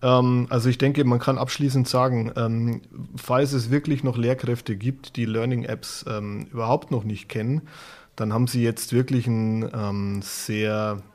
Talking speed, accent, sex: 140 wpm, German, male